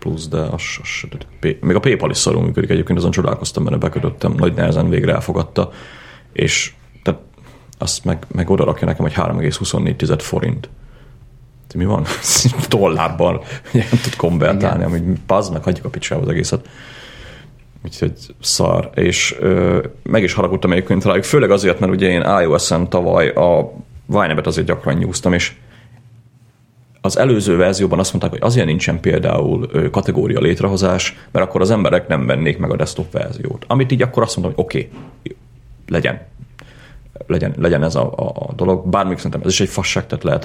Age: 30-49